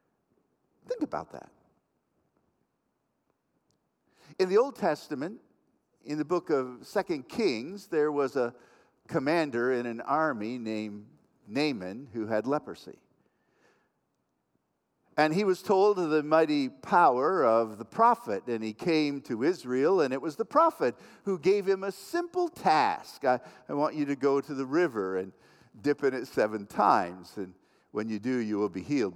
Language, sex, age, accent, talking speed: English, male, 50-69, American, 155 wpm